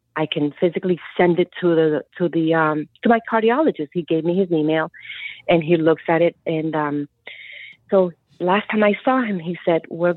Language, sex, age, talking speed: English, female, 30-49, 200 wpm